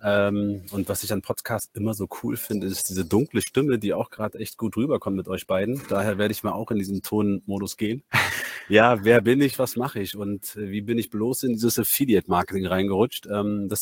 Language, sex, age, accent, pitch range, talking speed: German, male, 30-49, German, 95-110 Hz, 210 wpm